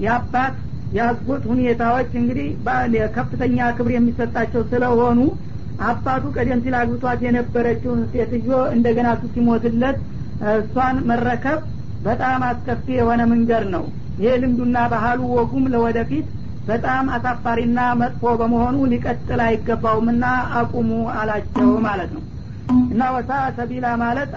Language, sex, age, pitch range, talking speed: Amharic, female, 50-69, 230-250 Hz, 100 wpm